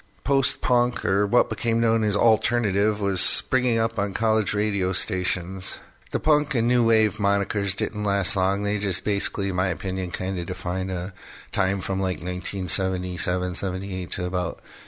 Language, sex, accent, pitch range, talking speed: English, male, American, 95-115 Hz, 165 wpm